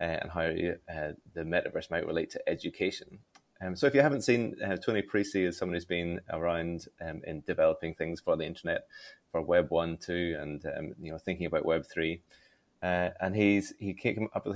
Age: 30-49